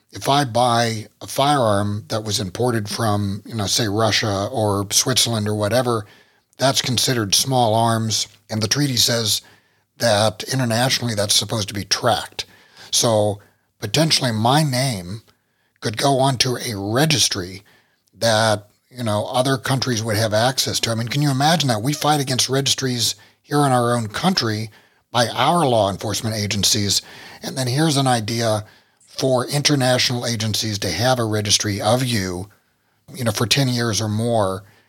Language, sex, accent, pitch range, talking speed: English, male, American, 105-130 Hz, 155 wpm